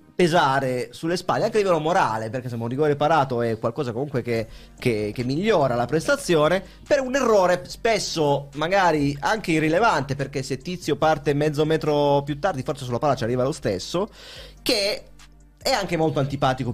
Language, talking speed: Italian, 170 wpm